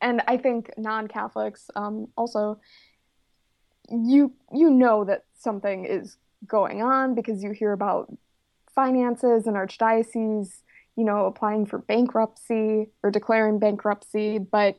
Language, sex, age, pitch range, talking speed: English, female, 20-39, 205-235 Hz, 120 wpm